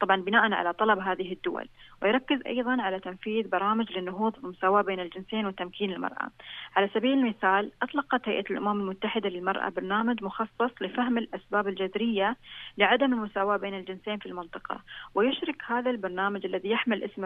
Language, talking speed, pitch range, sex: Arabic, 145 wpm, 190-225 Hz, female